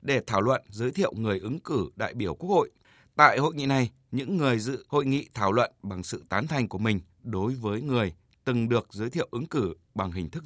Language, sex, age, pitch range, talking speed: Vietnamese, male, 20-39, 110-135 Hz, 235 wpm